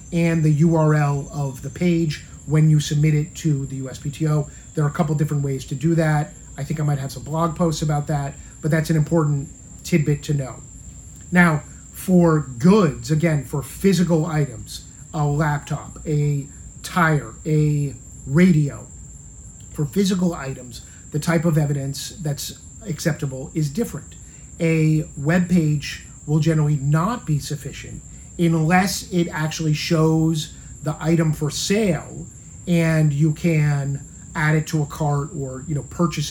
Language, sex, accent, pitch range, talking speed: English, male, American, 140-165 Hz, 150 wpm